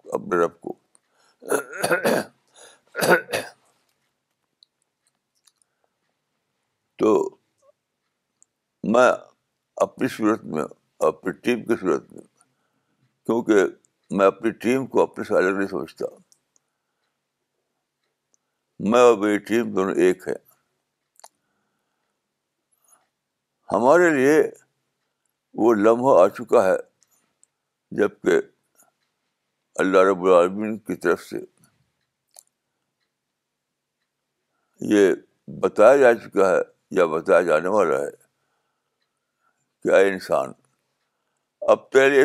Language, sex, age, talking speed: Urdu, male, 60-79, 75 wpm